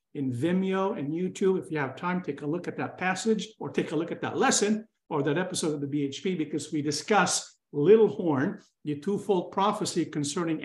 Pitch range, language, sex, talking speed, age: 165-215 Hz, English, male, 205 wpm, 50-69